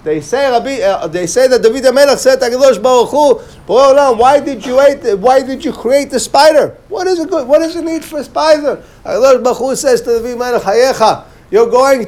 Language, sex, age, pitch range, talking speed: English, male, 50-69, 215-285 Hz, 200 wpm